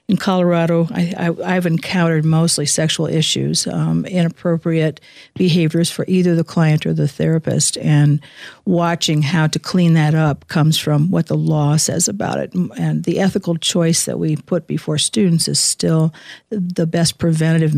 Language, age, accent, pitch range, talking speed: English, 60-79, American, 150-175 Hz, 160 wpm